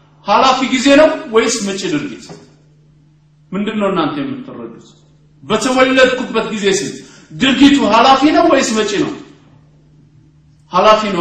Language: Amharic